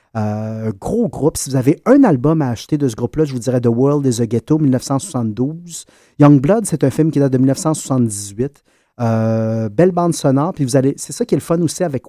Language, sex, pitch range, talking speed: French, male, 120-145 Hz, 235 wpm